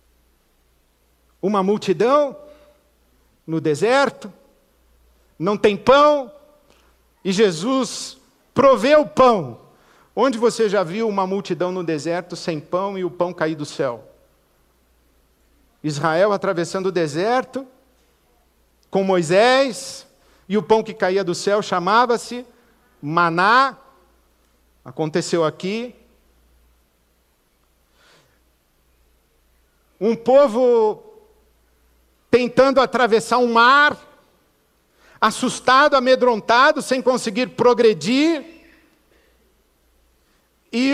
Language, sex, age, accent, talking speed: Portuguese, male, 50-69, Brazilian, 80 wpm